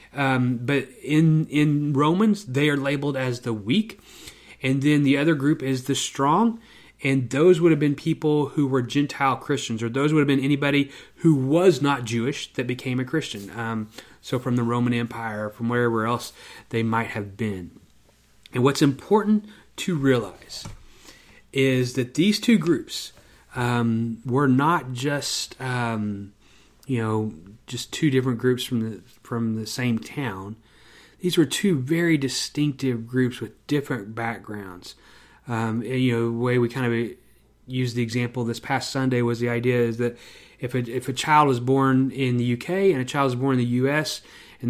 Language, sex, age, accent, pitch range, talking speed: English, male, 30-49, American, 120-145 Hz, 175 wpm